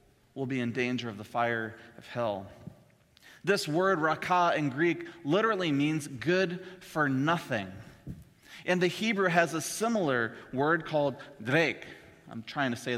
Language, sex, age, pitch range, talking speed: English, male, 30-49, 125-185 Hz, 150 wpm